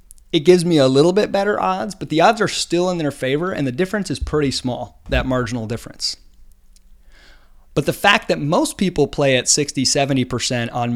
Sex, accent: male, American